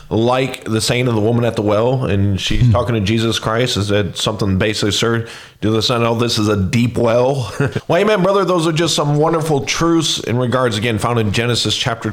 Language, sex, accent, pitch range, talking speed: English, male, American, 100-125 Hz, 225 wpm